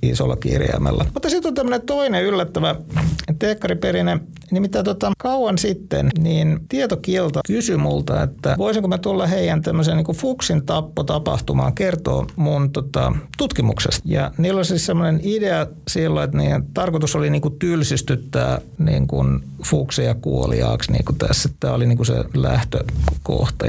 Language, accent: Finnish, native